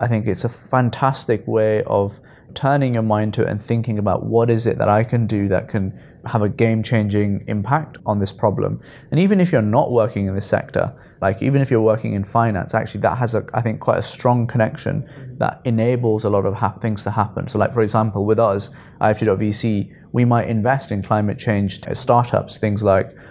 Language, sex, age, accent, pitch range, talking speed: English, male, 20-39, British, 105-130 Hz, 210 wpm